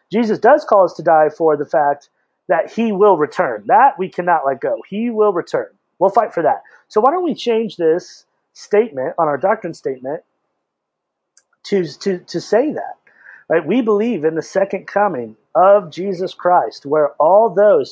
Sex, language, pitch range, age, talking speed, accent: male, English, 160-215 Hz, 30-49, 180 wpm, American